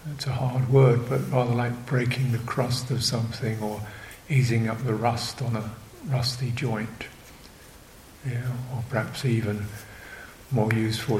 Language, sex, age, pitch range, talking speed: English, male, 60-79, 110-130 Hz, 140 wpm